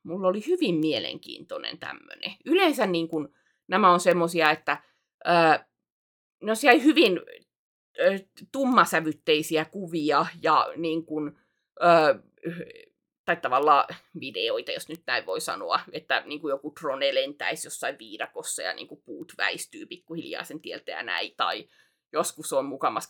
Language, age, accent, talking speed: Finnish, 30-49, native, 130 wpm